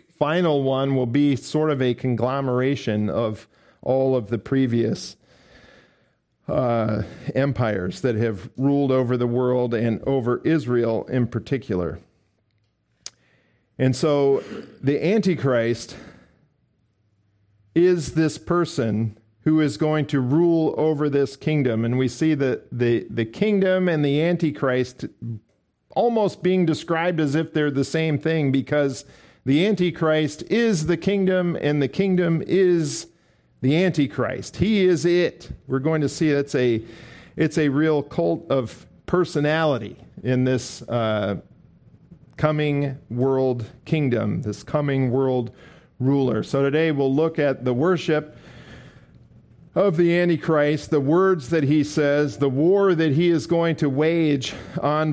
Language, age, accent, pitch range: English, 50-69, American, 125-160 Hz